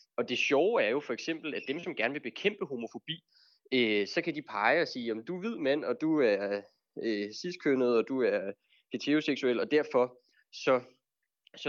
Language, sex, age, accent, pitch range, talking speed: Danish, male, 20-39, native, 110-150 Hz, 200 wpm